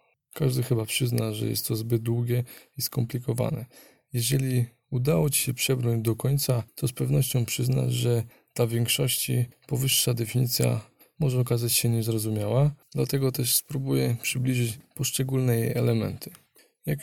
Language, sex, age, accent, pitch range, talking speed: Polish, male, 20-39, native, 115-140 Hz, 135 wpm